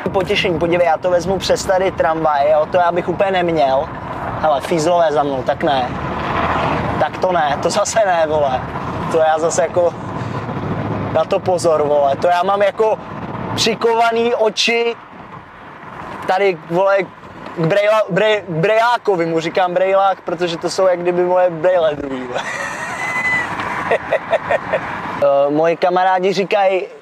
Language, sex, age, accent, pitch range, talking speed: Czech, male, 20-39, native, 160-190 Hz, 135 wpm